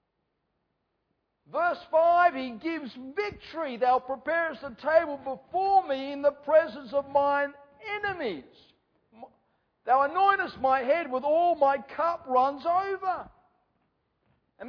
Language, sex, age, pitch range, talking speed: English, male, 50-69, 275-350 Hz, 115 wpm